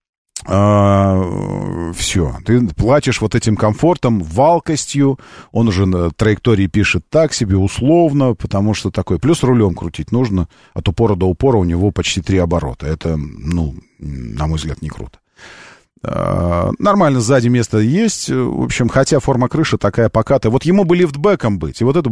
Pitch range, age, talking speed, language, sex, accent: 90-130 Hz, 40-59, 160 wpm, Russian, male, native